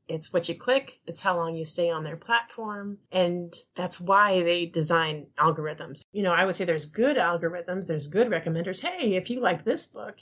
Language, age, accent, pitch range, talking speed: English, 30-49, American, 160-185 Hz, 205 wpm